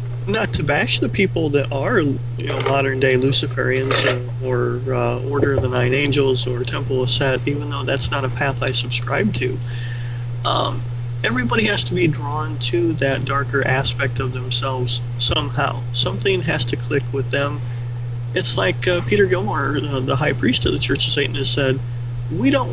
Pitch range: 120-135 Hz